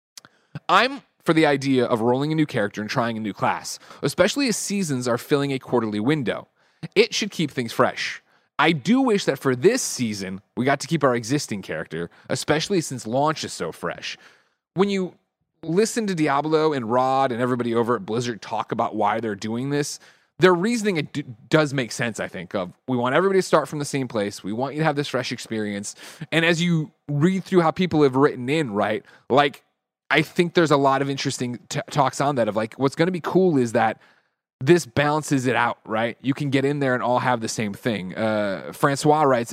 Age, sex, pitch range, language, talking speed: 30-49, male, 120-160 Hz, English, 215 wpm